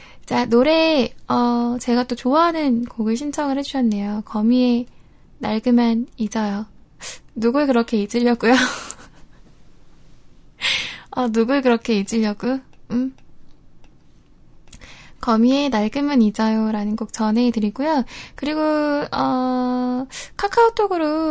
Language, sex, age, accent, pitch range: Korean, female, 10-29, native, 225-290 Hz